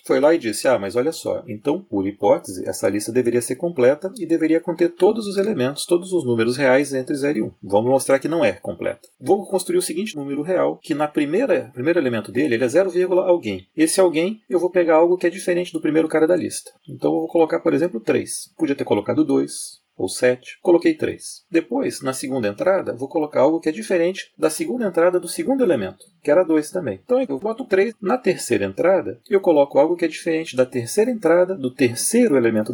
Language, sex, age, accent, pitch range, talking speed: Portuguese, male, 40-59, Brazilian, 130-185 Hz, 225 wpm